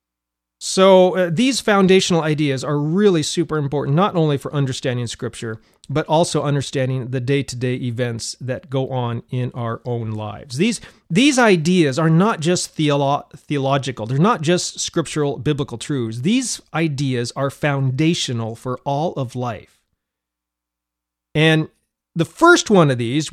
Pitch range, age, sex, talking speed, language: 135-205 Hz, 40-59, male, 140 wpm, English